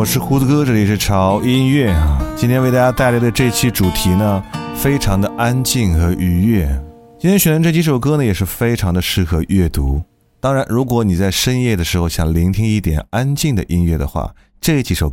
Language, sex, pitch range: Chinese, male, 90-130 Hz